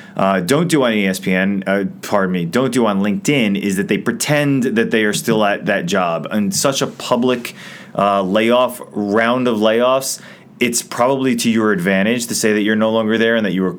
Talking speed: 205 wpm